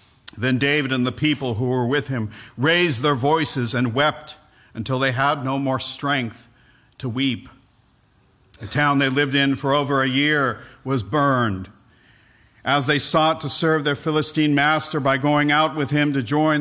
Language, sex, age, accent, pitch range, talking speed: English, male, 50-69, American, 130-155 Hz, 175 wpm